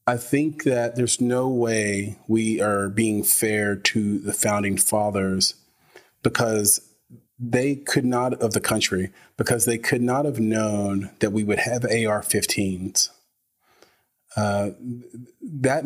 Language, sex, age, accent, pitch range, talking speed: English, male, 30-49, American, 100-120 Hz, 125 wpm